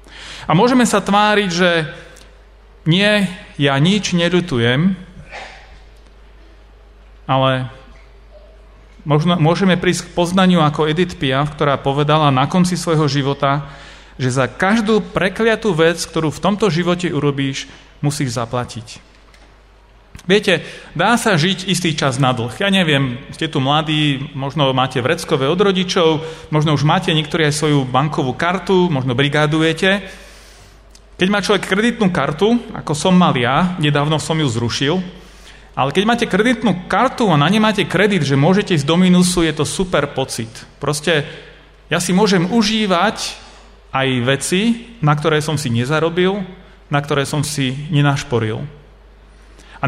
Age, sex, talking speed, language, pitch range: 40-59, male, 135 wpm, Slovak, 145-190 Hz